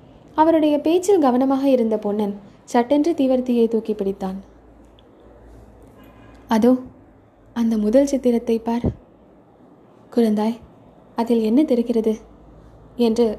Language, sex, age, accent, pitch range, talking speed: Tamil, female, 20-39, native, 210-260 Hz, 85 wpm